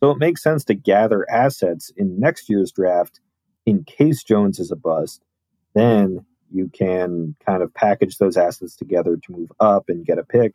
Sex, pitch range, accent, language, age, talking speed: male, 90-105 Hz, American, English, 30-49, 190 wpm